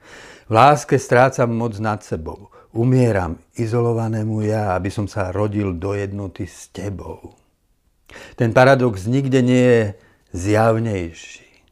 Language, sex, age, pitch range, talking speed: Slovak, male, 60-79, 80-115 Hz, 120 wpm